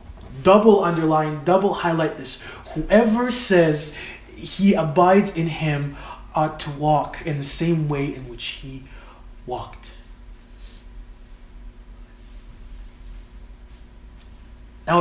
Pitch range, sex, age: 135-175 Hz, male, 20-39